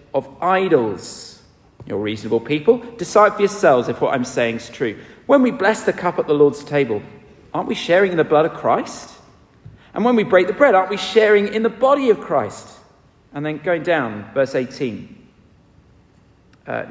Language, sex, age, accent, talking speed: English, male, 50-69, British, 185 wpm